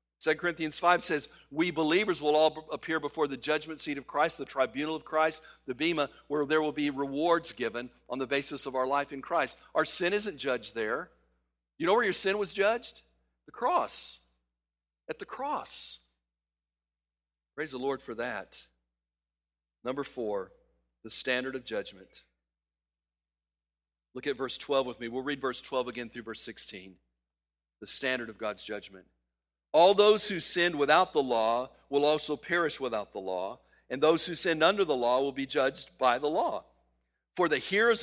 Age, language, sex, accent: 50-69, English, male, American